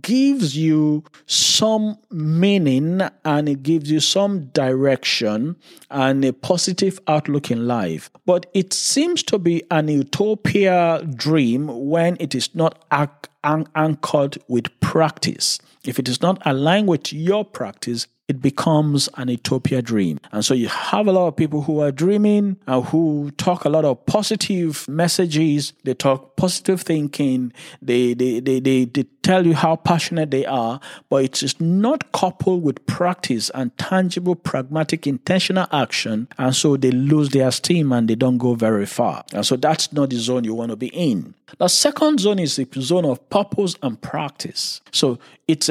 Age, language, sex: 50-69, English, male